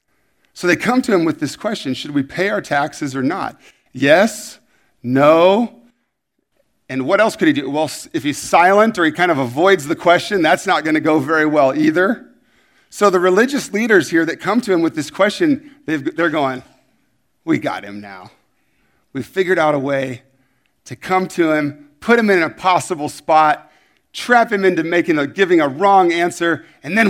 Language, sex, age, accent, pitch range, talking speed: English, male, 40-59, American, 145-215 Hz, 195 wpm